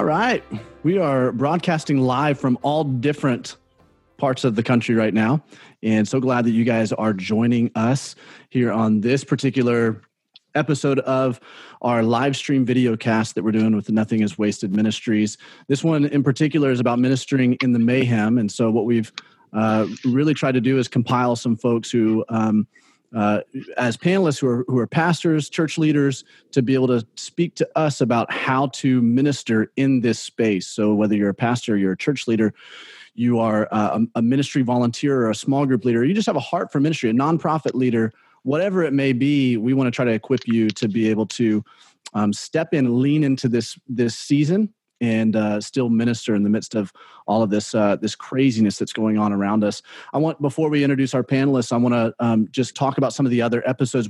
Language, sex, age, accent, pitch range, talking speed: English, male, 30-49, American, 110-140 Hz, 205 wpm